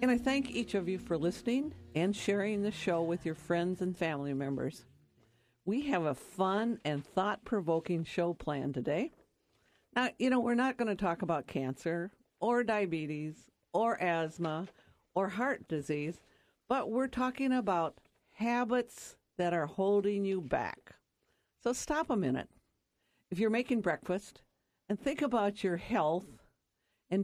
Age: 50-69